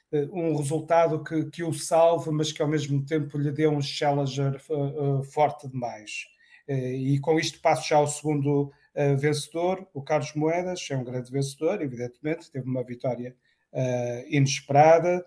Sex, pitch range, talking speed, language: male, 140-160 Hz, 170 wpm, Portuguese